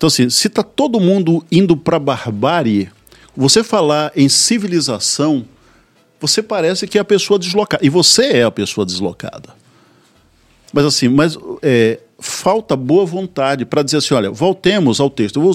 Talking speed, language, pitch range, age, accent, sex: 165 wpm, Portuguese, 120-185 Hz, 50-69, Brazilian, male